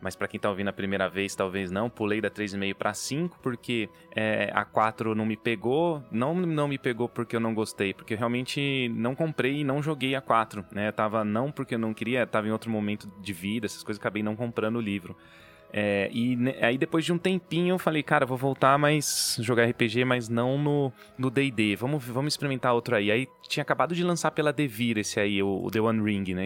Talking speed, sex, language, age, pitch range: 230 wpm, male, Portuguese, 20-39, 105-140 Hz